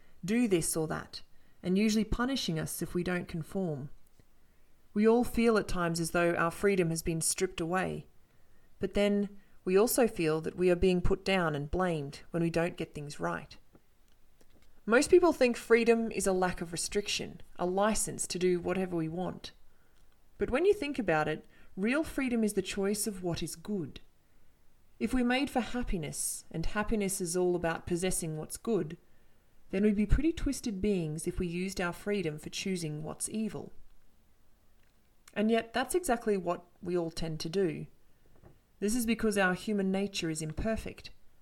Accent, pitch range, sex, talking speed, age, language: Australian, 170-215 Hz, female, 175 wpm, 30-49, English